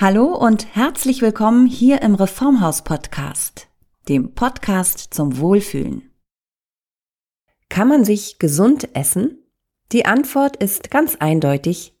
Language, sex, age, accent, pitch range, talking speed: German, female, 40-59, German, 170-230 Hz, 105 wpm